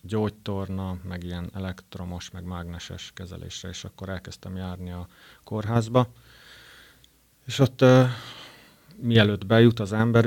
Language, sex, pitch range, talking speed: Hungarian, male, 90-105 Hz, 115 wpm